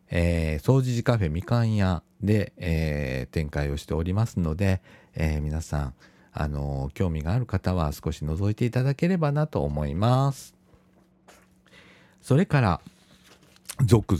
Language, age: Japanese, 50-69